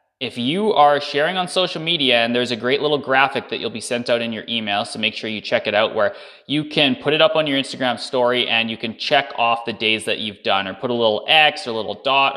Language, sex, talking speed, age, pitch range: English, male, 275 wpm, 20-39, 115-155 Hz